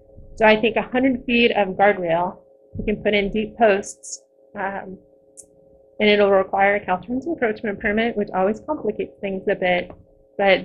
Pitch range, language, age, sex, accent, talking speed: 190-225 Hz, English, 20-39, female, American, 160 wpm